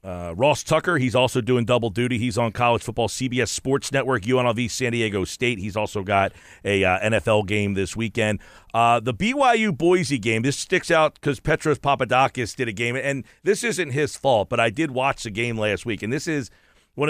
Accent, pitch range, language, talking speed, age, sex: American, 110-150 Hz, English, 205 wpm, 40-59, male